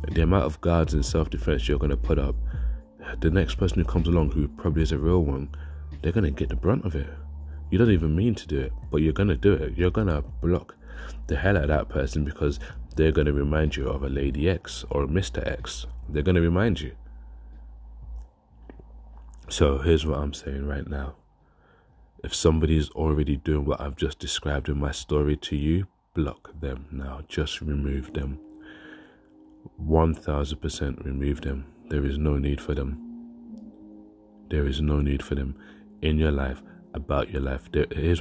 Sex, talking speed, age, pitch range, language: male, 195 wpm, 20-39, 70-85 Hz, English